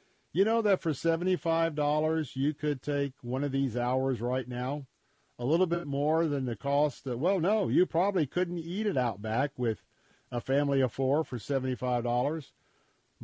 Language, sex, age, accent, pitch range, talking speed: English, male, 50-69, American, 135-170 Hz, 170 wpm